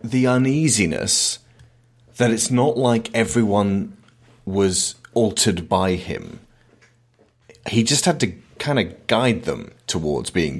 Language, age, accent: English, 30-49, British